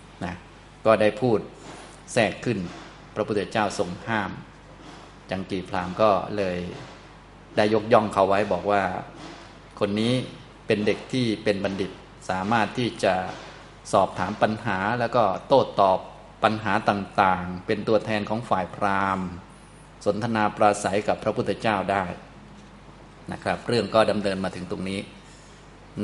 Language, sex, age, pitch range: Thai, male, 20-39, 95-110 Hz